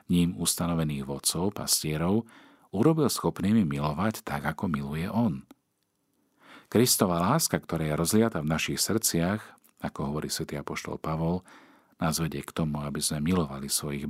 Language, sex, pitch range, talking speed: Slovak, male, 75-95 Hz, 135 wpm